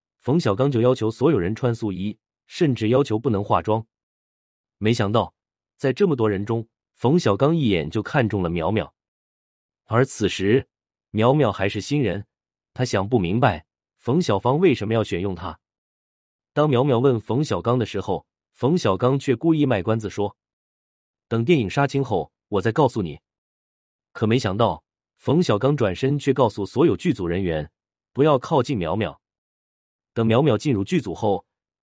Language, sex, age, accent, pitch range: Chinese, male, 30-49, native, 95-130 Hz